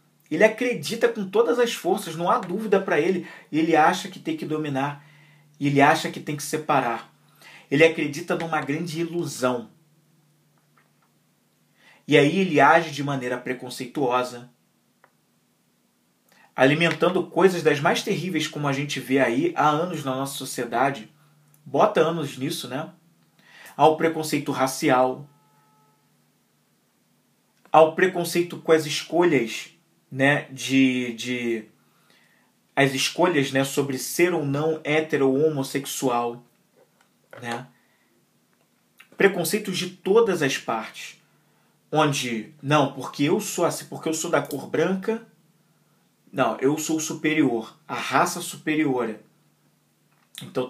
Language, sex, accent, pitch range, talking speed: Portuguese, male, Brazilian, 135-165 Hz, 125 wpm